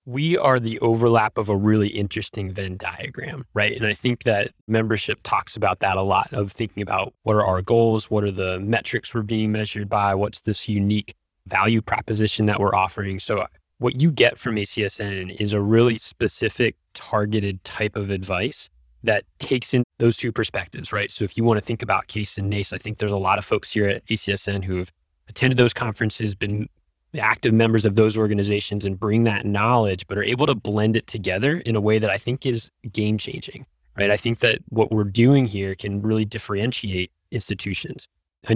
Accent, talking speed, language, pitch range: American, 200 wpm, English, 100-115 Hz